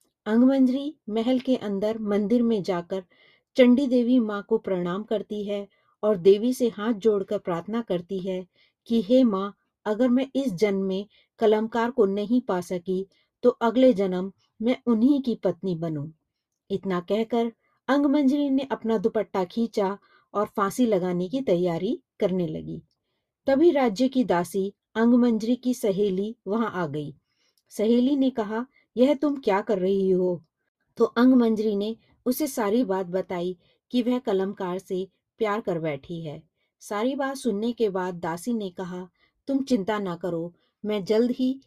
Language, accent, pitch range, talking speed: Hindi, native, 190-240 Hz, 155 wpm